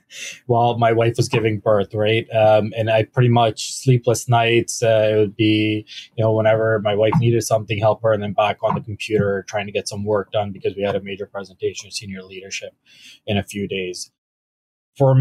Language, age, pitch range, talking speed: English, 20-39, 105-115 Hz, 210 wpm